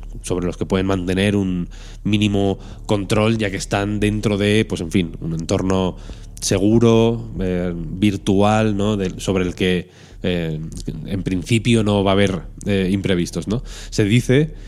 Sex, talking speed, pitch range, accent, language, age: male, 155 wpm, 95-110 Hz, Spanish, Spanish, 20-39